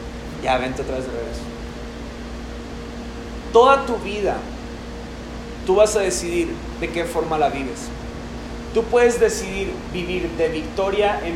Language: Spanish